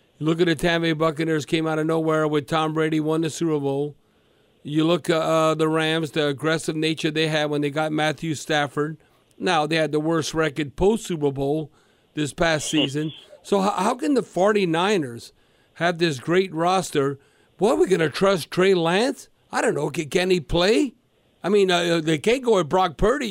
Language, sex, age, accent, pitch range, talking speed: English, male, 50-69, American, 160-200 Hz, 200 wpm